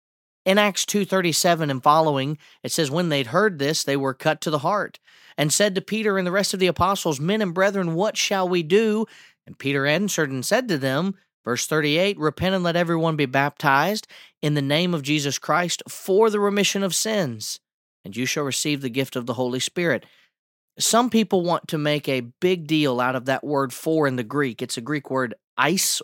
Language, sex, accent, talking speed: English, male, American, 210 wpm